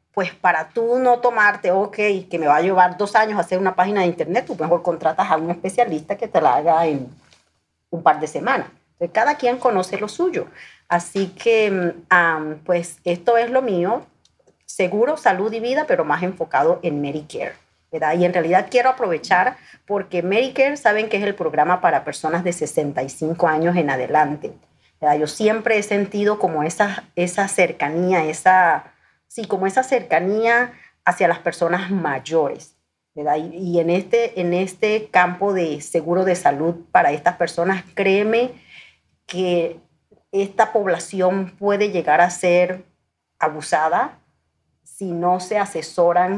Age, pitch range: 40-59, 165-205 Hz